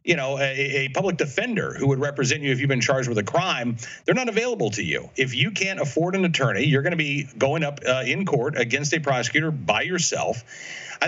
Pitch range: 135-175 Hz